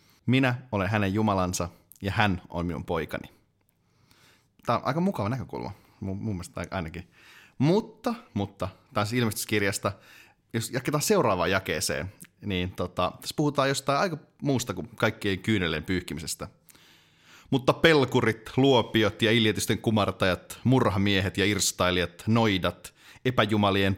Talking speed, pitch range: 120 wpm, 90-115 Hz